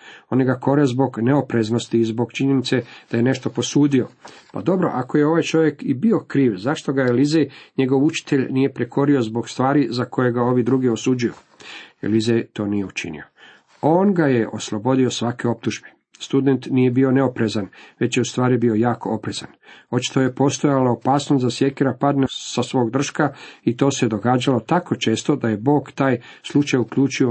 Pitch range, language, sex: 120-140 Hz, Croatian, male